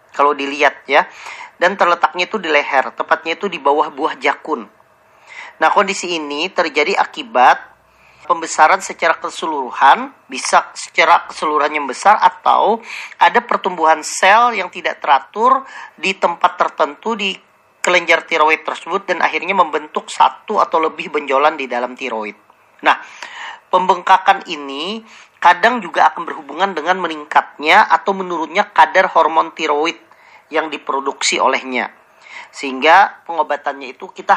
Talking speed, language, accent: 125 wpm, Indonesian, native